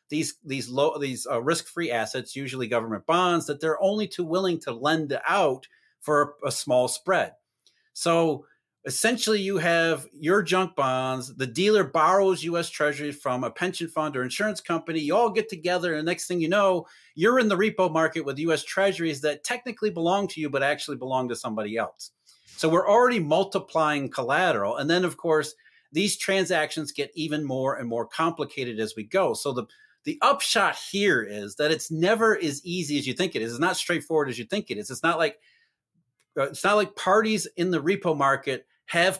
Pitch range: 145-190 Hz